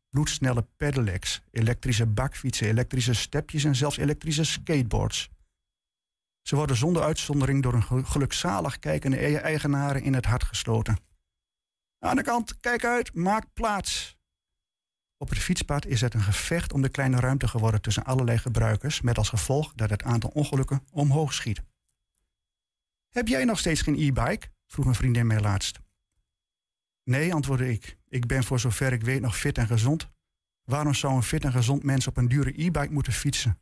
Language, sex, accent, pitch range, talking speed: Dutch, male, Dutch, 115-150 Hz, 160 wpm